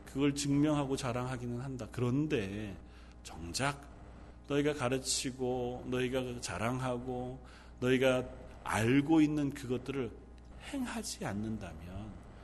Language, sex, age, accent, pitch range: Korean, male, 40-59, native, 125-195 Hz